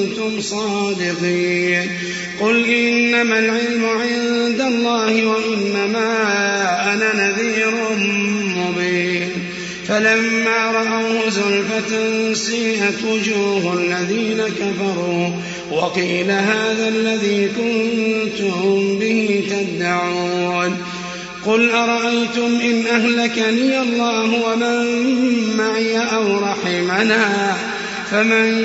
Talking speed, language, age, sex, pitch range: 70 wpm, Arabic, 30-49, male, 200-230 Hz